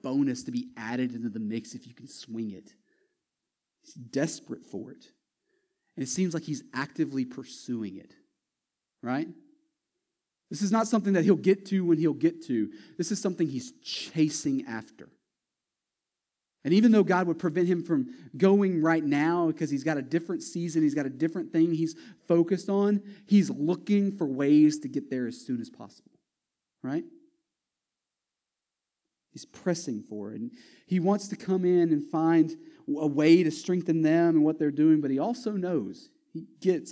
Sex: male